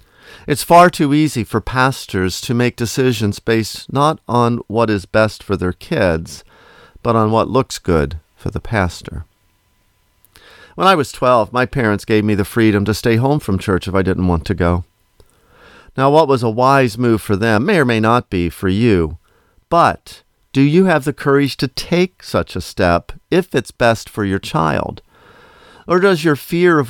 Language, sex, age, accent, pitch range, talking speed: English, male, 50-69, American, 95-130 Hz, 185 wpm